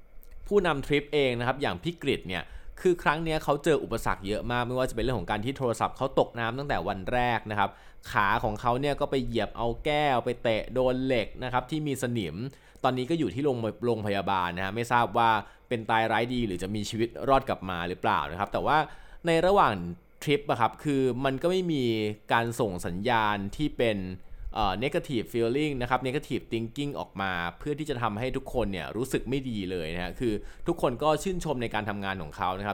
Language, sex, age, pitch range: Thai, male, 20-39, 100-140 Hz